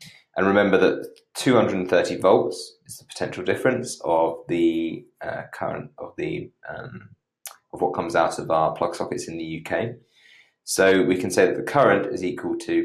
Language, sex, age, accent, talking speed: English, male, 30-49, British, 175 wpm